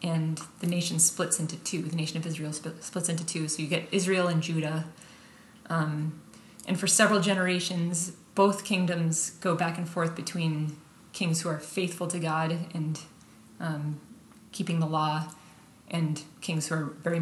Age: 20-39